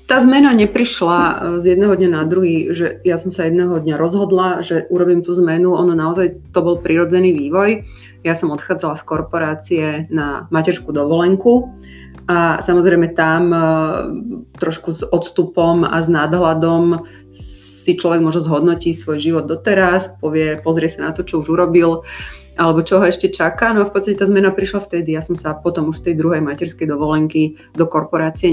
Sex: female